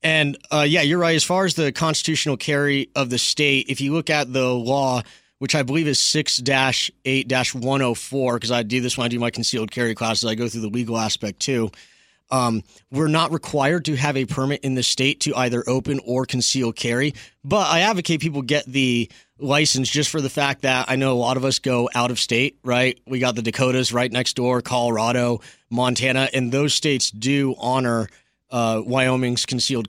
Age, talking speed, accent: 30-49, 200 wpm, American